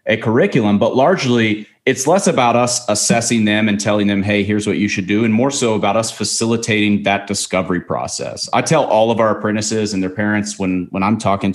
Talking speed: 215 wpm